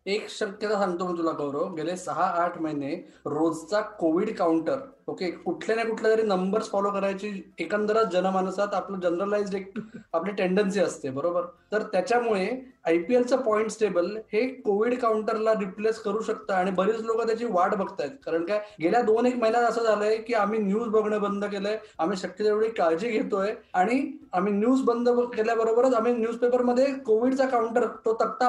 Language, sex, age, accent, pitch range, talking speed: Marathi, male, 20-39, native, 185-235 Hz, 160 wpm